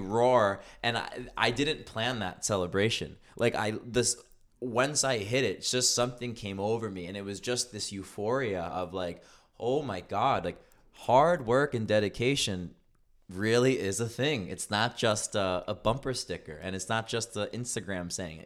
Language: English